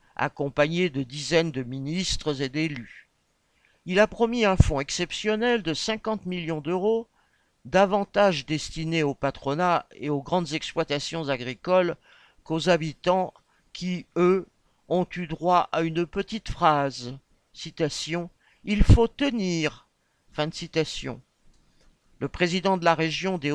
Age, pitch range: 50-69, 145-185 Hz